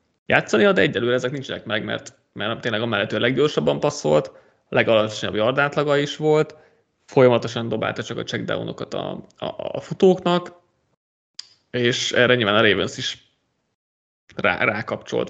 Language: Hungarian